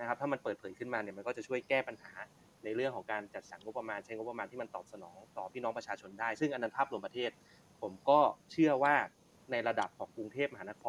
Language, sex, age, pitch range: Thai, male, 20-39, 105-130 Hz